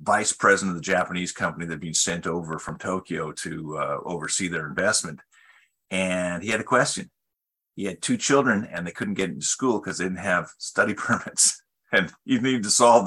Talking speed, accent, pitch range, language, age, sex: 200 wpm, American, 95-140 Hz, English, 40-59, male